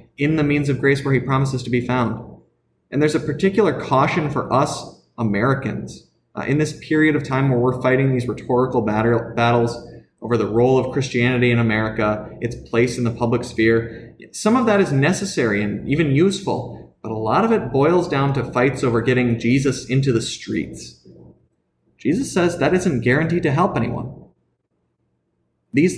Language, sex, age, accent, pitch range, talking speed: English, male, 30-49, American, 120-150 Hz, 175 wpm